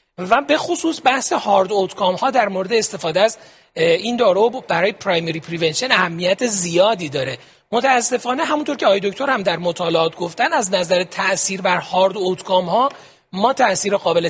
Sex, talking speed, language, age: male, 160 wpm, Persian, 40-59